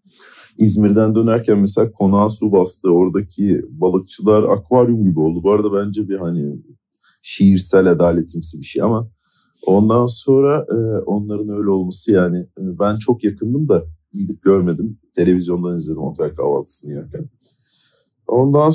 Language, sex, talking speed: Turkish, male, 125 wpm